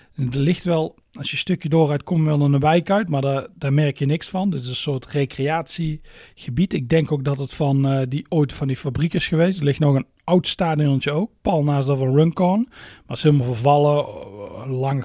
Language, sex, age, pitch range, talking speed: Dutch, male, 40-59, 130-155 Hz, 230 wpm